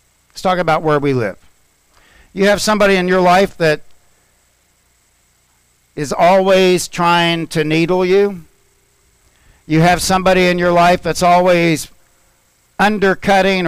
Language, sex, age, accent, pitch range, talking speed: English, male, 50-69, American, 150-195 Hz, 120 wpm